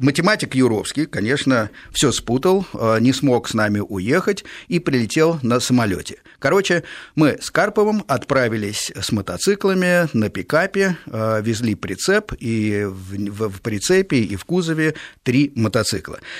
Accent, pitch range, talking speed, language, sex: native, 110-160 Hz, 125 wpm, Russian, male